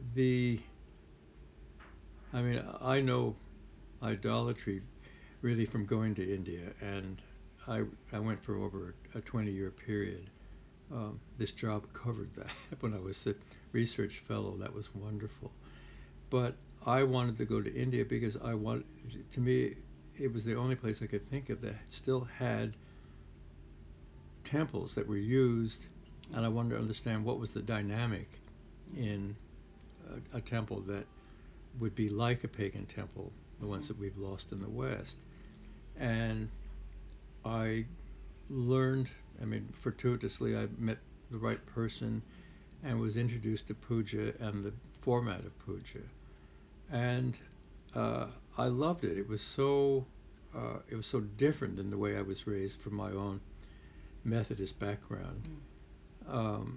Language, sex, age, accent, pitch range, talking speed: English, male, 60-79, American, 100-120 Hz, 145 wpm